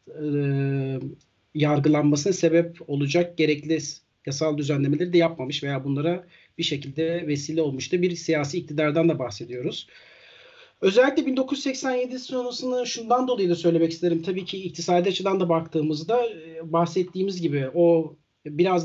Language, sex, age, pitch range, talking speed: Turkish, male, 40-59, 155-200 Hz, 120 wpm